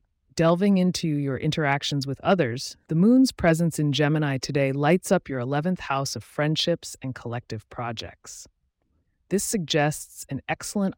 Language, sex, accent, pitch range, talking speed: English, female, American, 120-160 Hz, 140 wpm